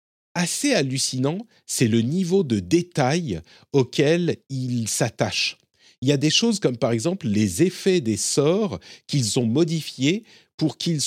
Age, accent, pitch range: 50-69, French, 115-165 Hz